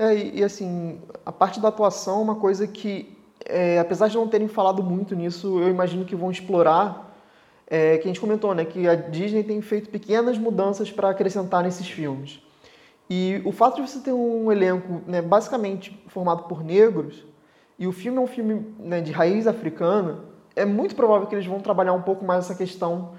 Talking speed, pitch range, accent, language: 200 wpm, 170-205 Hz, Brazilian, Portuguese